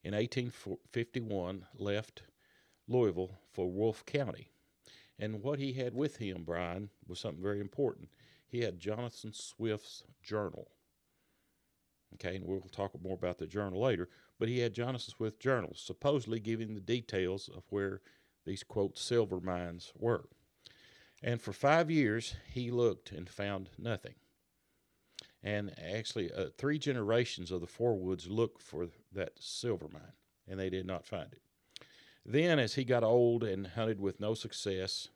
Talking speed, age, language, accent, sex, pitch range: 150 wpm, 50-69, English, American, male, 95-115 Hz